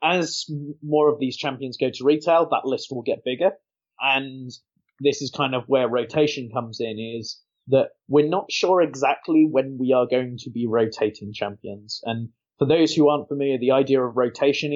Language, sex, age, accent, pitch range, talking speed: English, male, 20-39, British, 115-140 Hz, 185 wpm